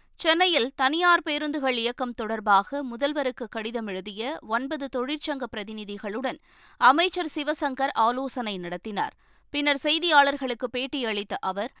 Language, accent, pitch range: Tamil, native, 220-285 Hz